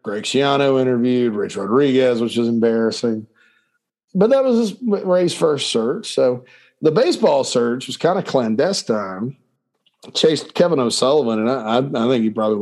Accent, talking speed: American, 145 wpm